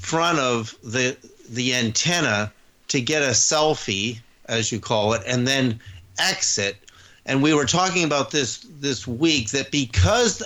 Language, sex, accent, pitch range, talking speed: English, male, American, 115-150 Hz, 150 wpm